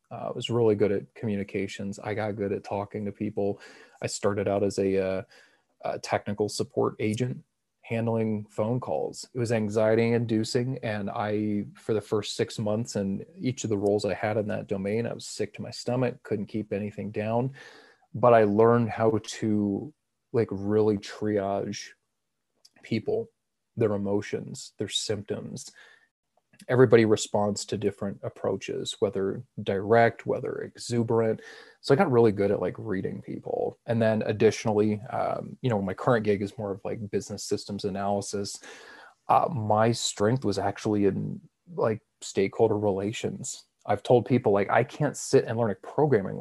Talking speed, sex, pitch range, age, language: 160 wpm, male, 100-115 Hz, 30-49, English